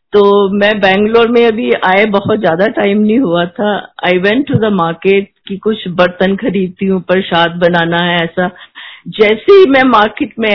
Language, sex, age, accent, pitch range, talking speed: Hindi, female, 50-69, native, 190-255 Hz, 175 wpm